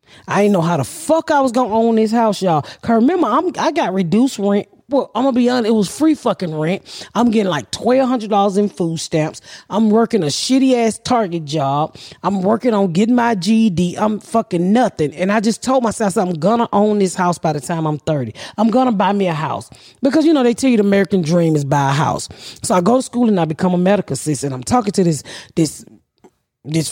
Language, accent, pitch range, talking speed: English, American, 160-225 Hz, 245 wpm